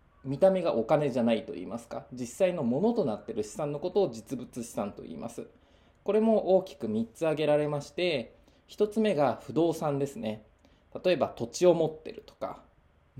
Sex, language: male, Japanese